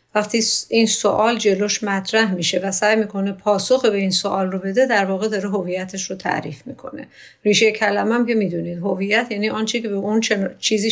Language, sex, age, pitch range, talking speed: Persian, female, 50-69, 200-245 Hz, 185 wpm